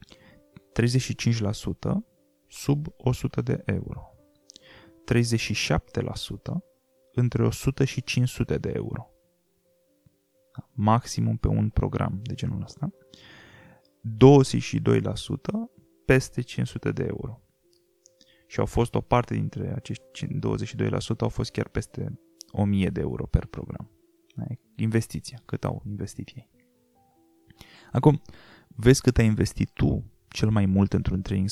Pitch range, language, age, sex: 100-135 Hz, Romanian, 20-39, male